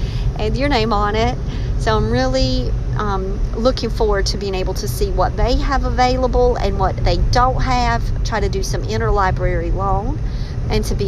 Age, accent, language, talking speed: 50-69, American, English, 185 wpm